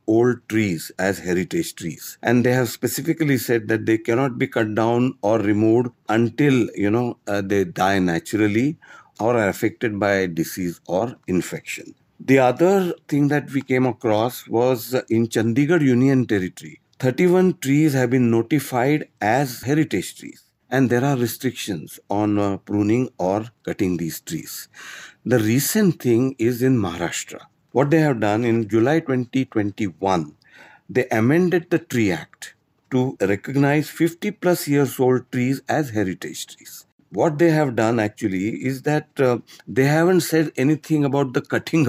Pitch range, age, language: 110-145 Hz, 50-69, English